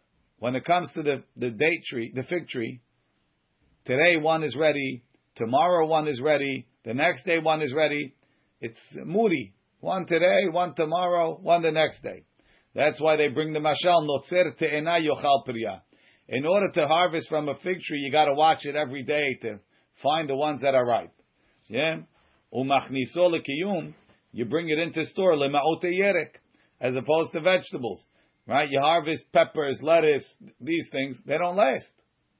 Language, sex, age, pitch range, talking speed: English, male, 50-69, 135-165 Hz, 160 wpm